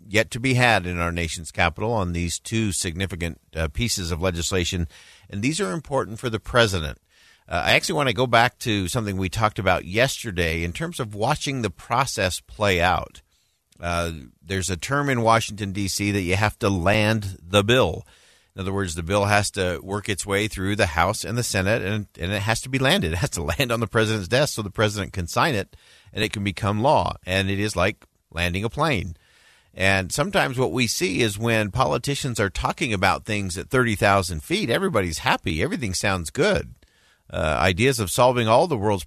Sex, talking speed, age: male, 205 wpm, 50-69